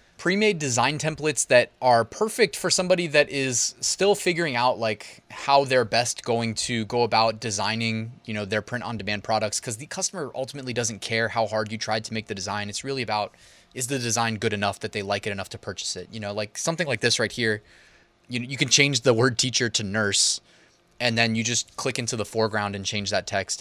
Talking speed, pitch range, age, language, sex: 220 wpm, 105-145 Hz, 20-39, English, male